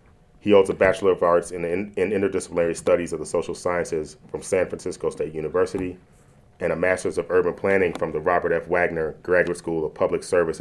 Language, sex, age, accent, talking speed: English, male, 30-49, American, 205 wpm